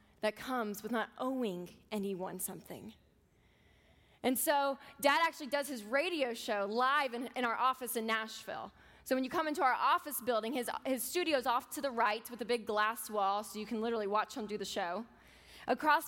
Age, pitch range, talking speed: 20-39, 220-275 Hz, 200 wpm